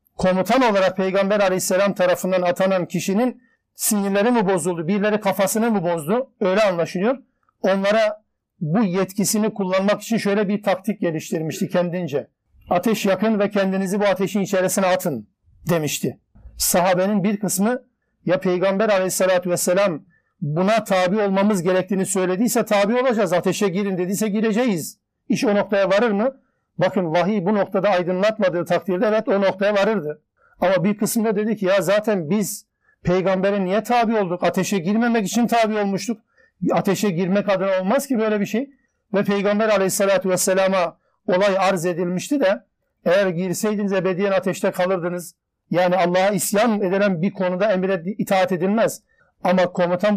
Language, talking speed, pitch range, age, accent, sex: Turkish, 140 wpm, 185-210 Hz, 50-69, native, male